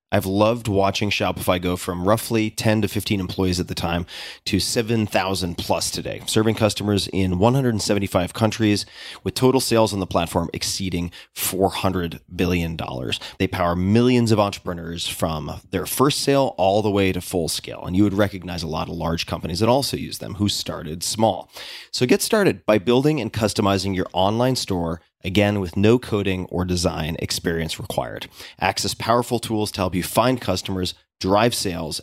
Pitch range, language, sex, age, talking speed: 90-110 Hz, English, male, 30-49, 170 wpm